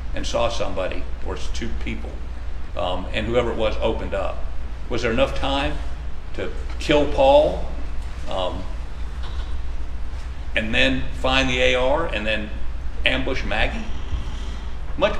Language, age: English, 60-79